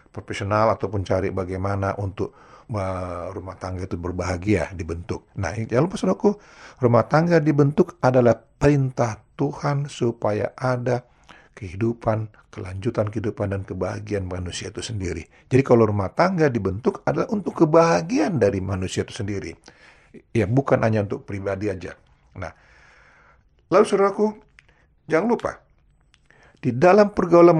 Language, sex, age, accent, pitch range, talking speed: Indonesian, male, 40-59, native, 100-150 Hz, 130 wpm